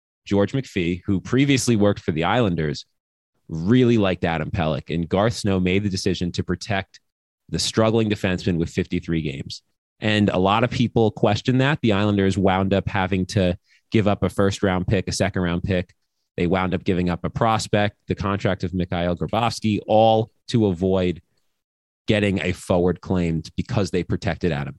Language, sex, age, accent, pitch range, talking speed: English, male, 30-49, American, 90-110 Hz, 170 wpm